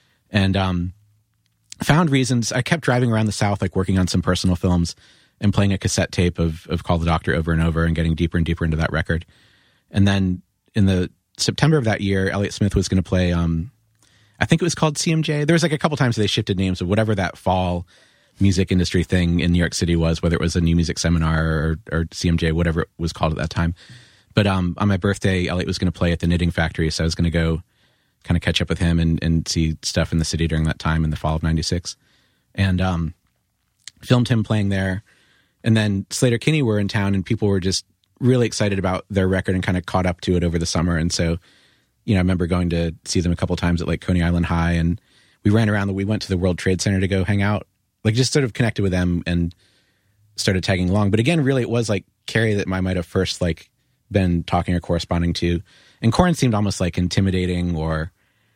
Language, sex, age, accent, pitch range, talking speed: English, male, 40-59, American, 85-105 Hz, 245 wpm